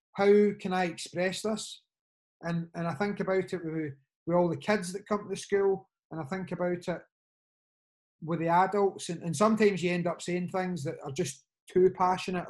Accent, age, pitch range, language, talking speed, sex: British, 30-49, 165-195 Hz, English, 195 wpm, male